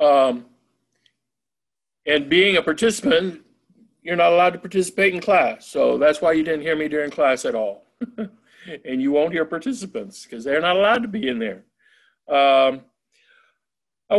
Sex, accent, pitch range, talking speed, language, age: male, American, 150-230 Hz, 160 wpm, English, 50-69